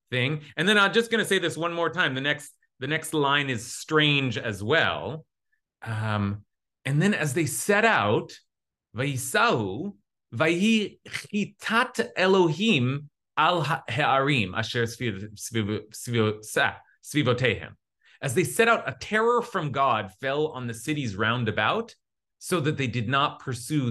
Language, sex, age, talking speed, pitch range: English, male, 30-49, 120 wpm, 120-180 Hz